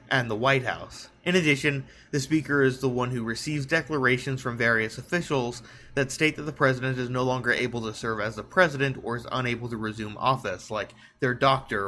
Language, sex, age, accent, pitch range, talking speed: English, male, 20-39, American, 115-140 Hz, 200 wpm